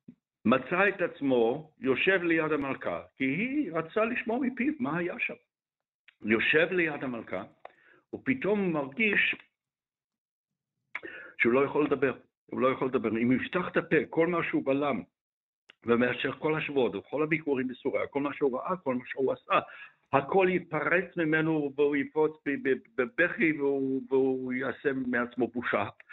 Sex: male